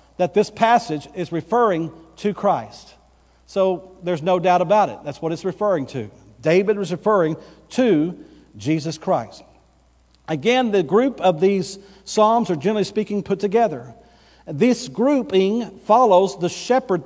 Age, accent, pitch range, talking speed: 50-69, American, 165-215 Hz, 140 wpm